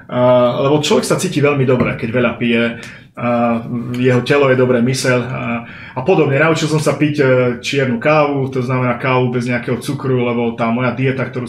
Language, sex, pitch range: Slovak, male, 120-135 Hz